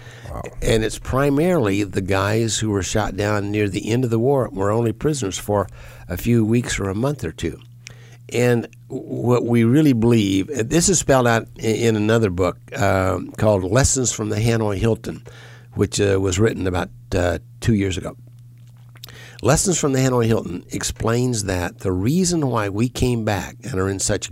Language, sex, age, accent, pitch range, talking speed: English, male, 60-79, American, 105-125 Hz, 180 wpm